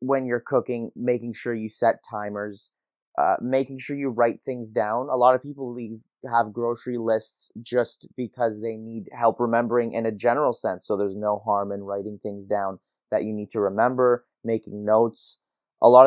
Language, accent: English, American